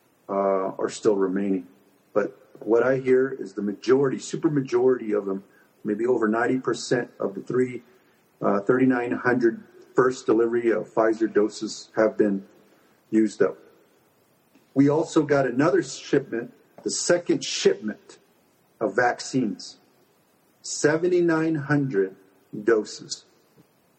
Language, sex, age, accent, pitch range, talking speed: English, male, 40-59, American, 110-135 Hz, 110 wpm